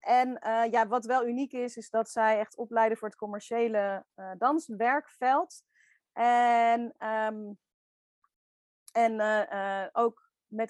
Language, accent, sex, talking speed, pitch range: Dutch, Dutch, female, 125 wpm, 210-245 Hz